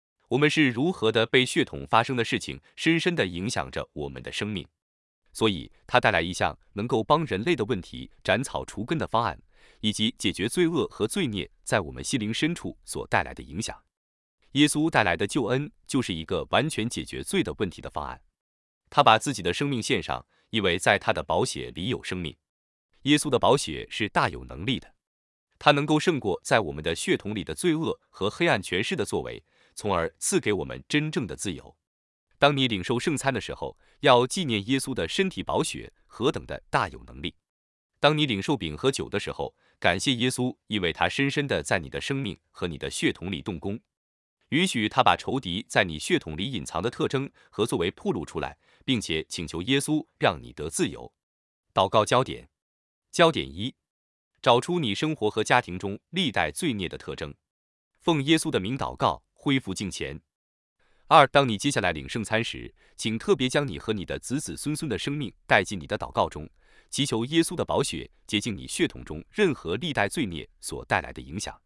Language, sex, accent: English, male, Chinese